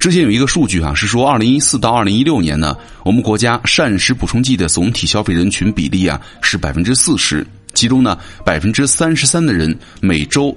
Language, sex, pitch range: Chinese, male, 85-115 Hz